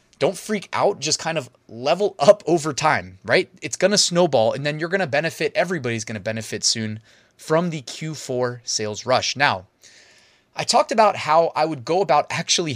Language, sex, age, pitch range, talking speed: English, male, 20-39, 125-185 Hz, 180 wpm